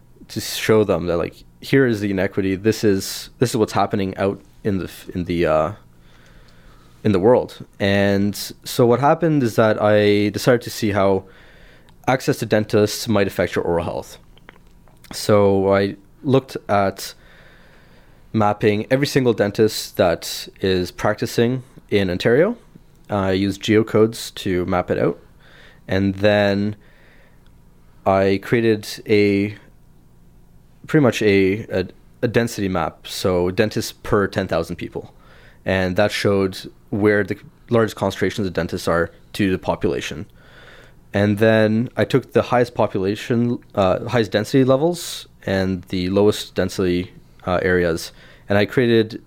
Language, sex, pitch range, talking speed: English, male, 90-110 Hz, 140 wpm